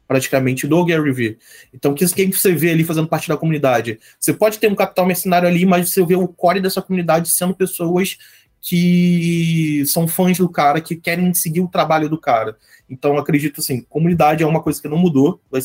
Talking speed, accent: 205 wpm, Brazilian